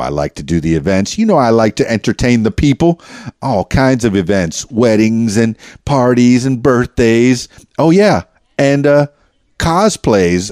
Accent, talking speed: American, 160 wpm